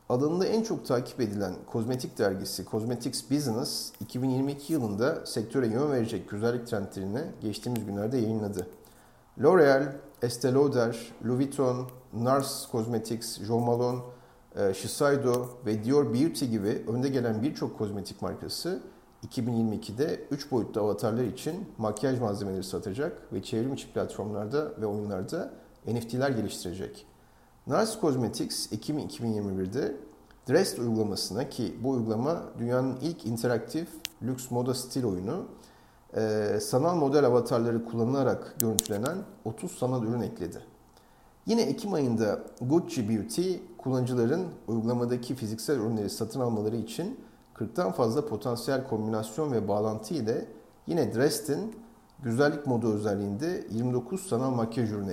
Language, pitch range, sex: Turkish, 110-135 Hz, male